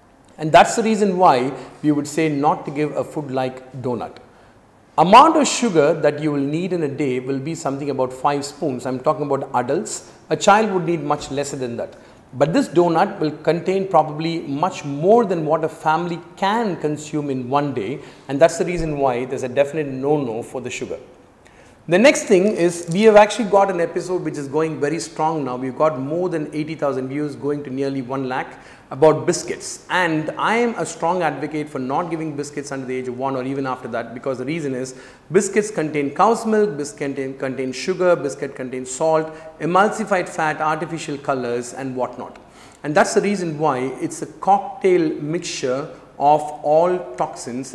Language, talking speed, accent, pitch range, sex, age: Tamil, 195 wpm, native, 135-175 Hz, male, 40-59